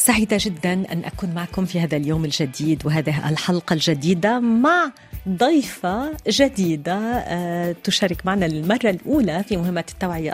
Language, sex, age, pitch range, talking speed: Arabic, female, 40-59, 170-220 Hz, 130 wpm